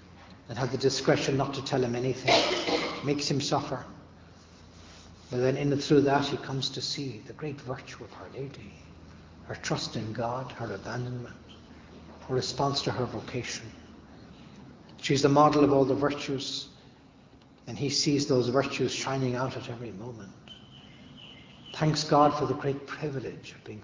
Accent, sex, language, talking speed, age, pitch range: Irish, male, English, 160 wpm, 60-79, 125-150 Hz